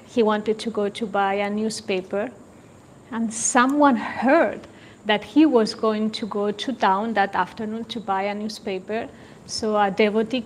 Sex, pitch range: female, 205-230 Hz